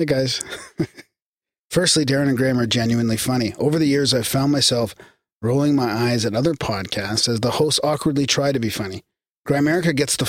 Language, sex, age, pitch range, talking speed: English, male, 40-59, 115-140 Hz, 185 wpm